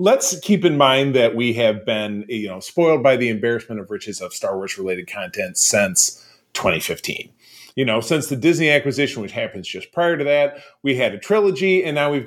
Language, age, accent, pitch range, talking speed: English, 40-59, American, 115-175 Hz, 205 wpm